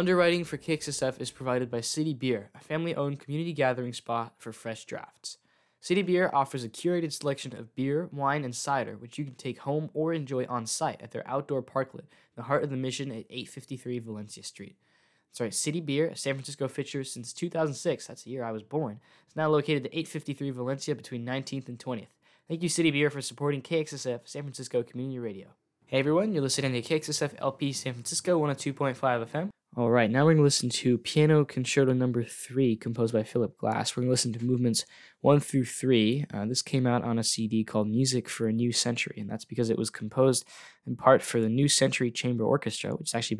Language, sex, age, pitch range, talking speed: English, male, 10-29, 120-145 Hz, 215 wpm